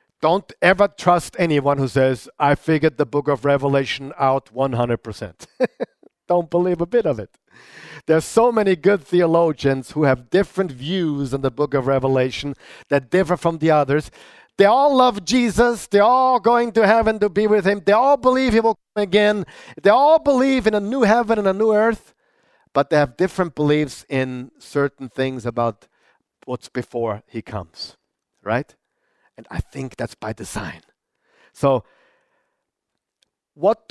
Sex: male